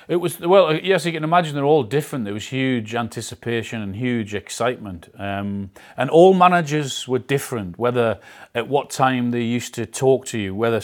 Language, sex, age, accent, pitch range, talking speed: Hebrew, male, 30-49, British, 105-125 Hz, 185 wpm